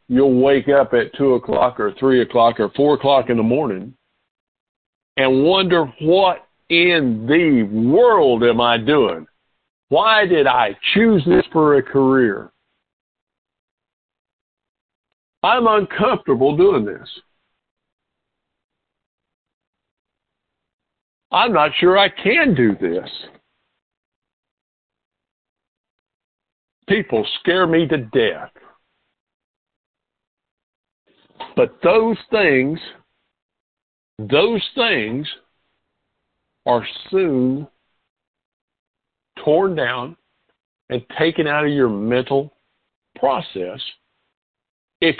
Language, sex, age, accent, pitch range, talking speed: English, male, 50-69, American, 125-165 Hz, 85 wpm